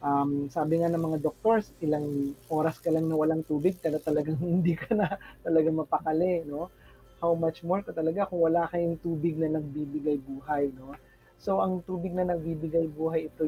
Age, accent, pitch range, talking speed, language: 20-39, native, 150-210 Hz, 185 wpm, Filipino